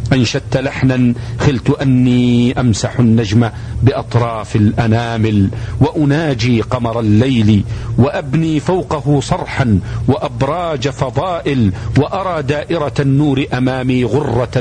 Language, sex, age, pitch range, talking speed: Arabic, male, 50-69, 115-135 Hz, 85 wpm